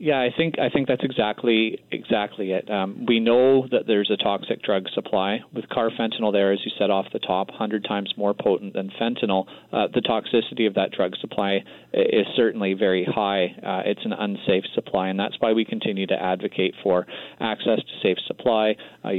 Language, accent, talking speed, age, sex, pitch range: English, American, 195 wpm, 30-49, male, 100-120 Hz